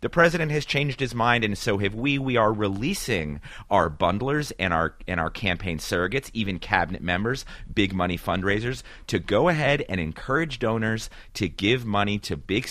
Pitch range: 85-115 Hz